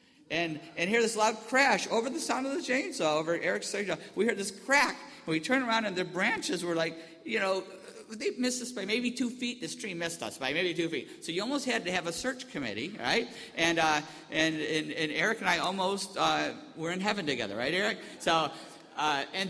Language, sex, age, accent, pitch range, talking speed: English, male, 50-69, American, 195-270 Hz, 230 wpm